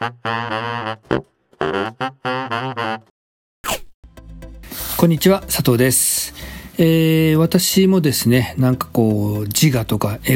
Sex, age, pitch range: male, 40-59, 120-160 Hz